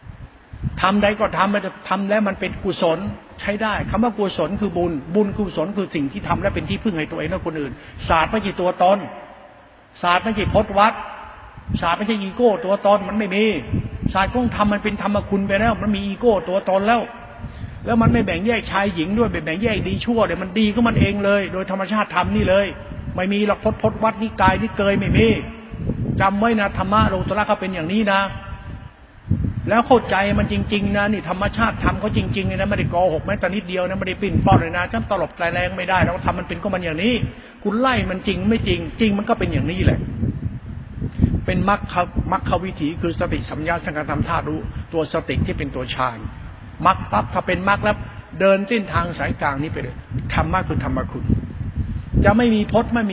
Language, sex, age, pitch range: Thai, male, 60-79, 170-210 Hz